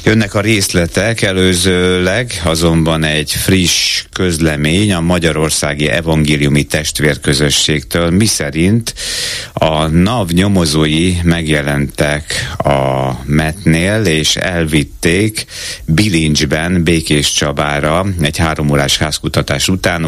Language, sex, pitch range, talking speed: Hungarian, male, 75-90 Hz, 85 wpm